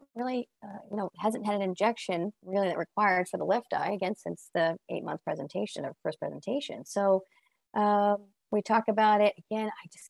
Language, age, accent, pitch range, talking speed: English, 30-49, American, 185-235 Hz, 190 wpm